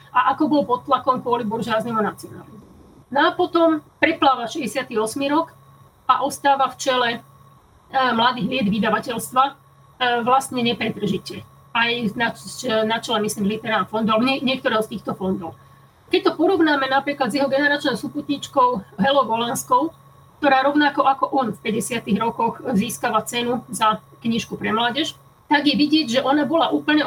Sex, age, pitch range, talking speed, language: female, 30-49, 215-270 Hz, 140 wpm, Slovak